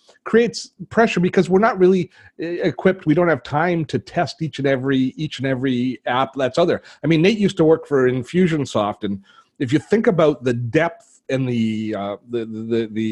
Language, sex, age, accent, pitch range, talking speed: English, male, 40-59, American, 120-155 Hz, 195 wpm